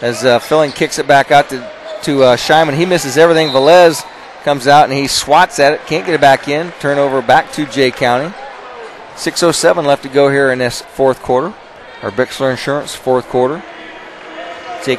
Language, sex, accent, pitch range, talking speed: English, male, American, 135-160 Hz, 190 wpm